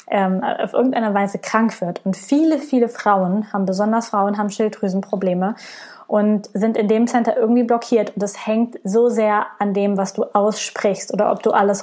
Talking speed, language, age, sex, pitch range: 180 wpm, German, 20-39, female, 200-235 Hz